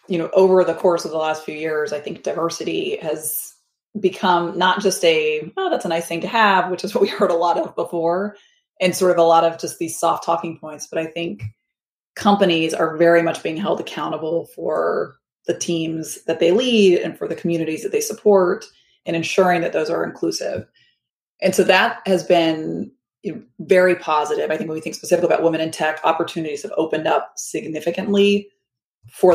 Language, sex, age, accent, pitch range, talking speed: English, female, 30-49, American, 165-195 Hz, 200 wpm